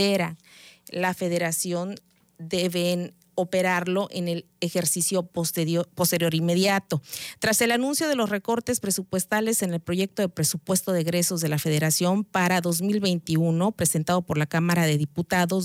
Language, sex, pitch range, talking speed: Spanish, female, 170-200 Hz, 140 wpm